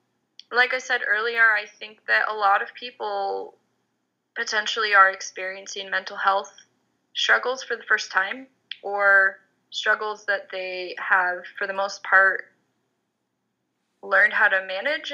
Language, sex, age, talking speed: English, female, 10-29, 135 wpm